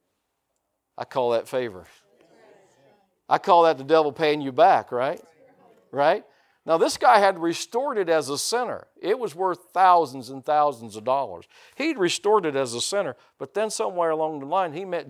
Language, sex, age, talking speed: English, male, 50-69, 180 wpm